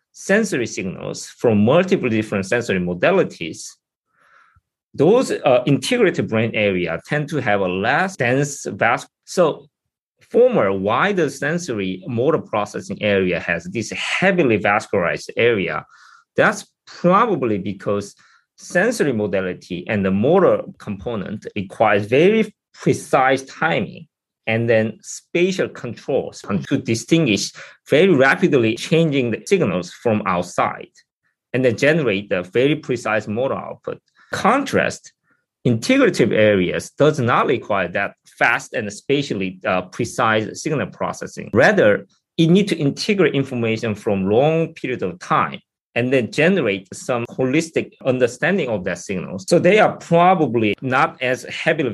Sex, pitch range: male, 105-160 Hz